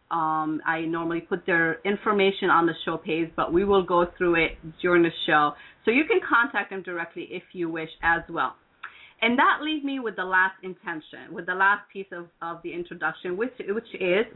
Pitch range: 175-235 Hz